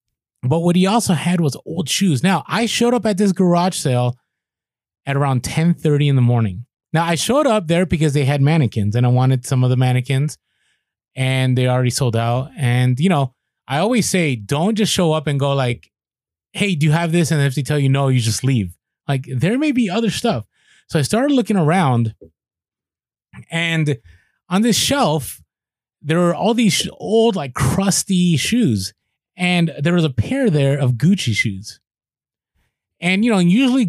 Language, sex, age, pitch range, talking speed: English, male, 20-39, 125-175 Hz, 195 wpm